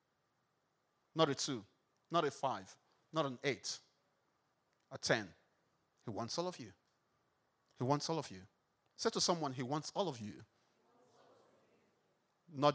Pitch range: 120-185 Hz